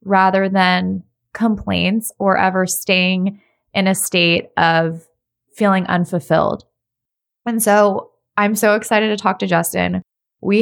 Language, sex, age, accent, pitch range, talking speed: English, female, 20-39, American, 170-205 Hz, 125 wpm